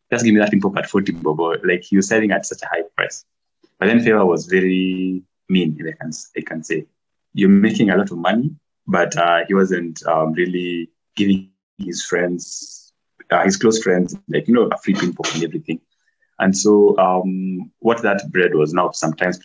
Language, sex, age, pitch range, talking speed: English, male, 20-39, 85-105 Hz, 205 wpm